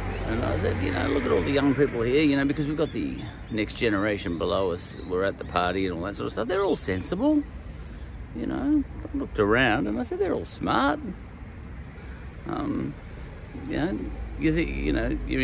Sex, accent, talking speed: male, Australian, 195 wpm